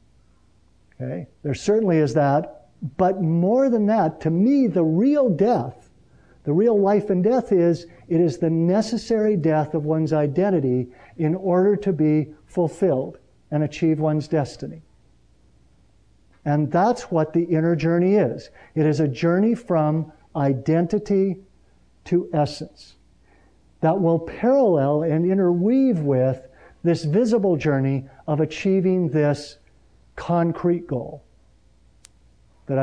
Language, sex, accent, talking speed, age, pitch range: English, male, American, 120 wpm, 50-69, 120-185 Hz